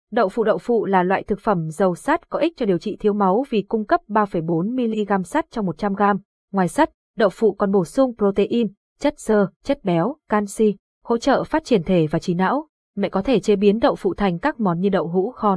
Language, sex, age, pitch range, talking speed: Vietnamese, female, 20-39, 185-240 Hz, 225 wpm